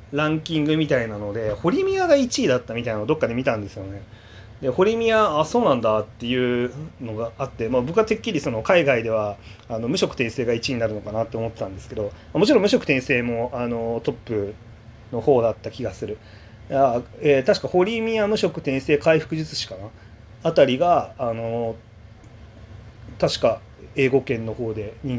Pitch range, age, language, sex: 110-140 Hz, 30-49, Japanese, male